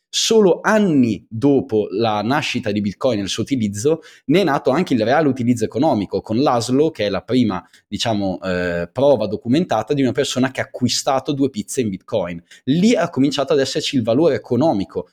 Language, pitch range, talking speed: Italian, 105-150 Hz, 185 wpm